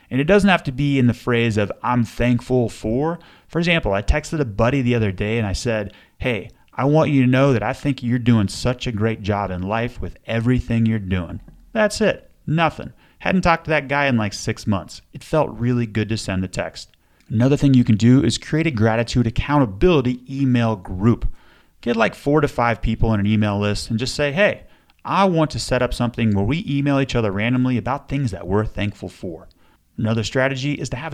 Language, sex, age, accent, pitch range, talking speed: English, male, 30-49, American, 110-140 Hz, 220 wpm